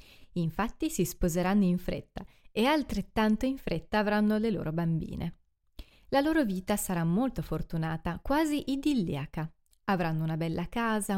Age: 30-49